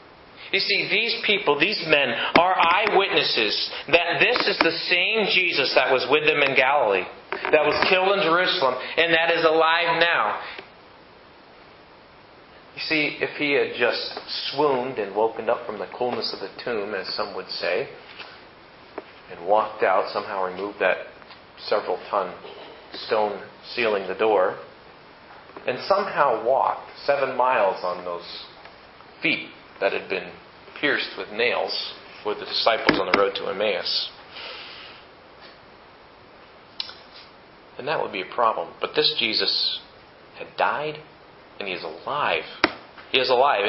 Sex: male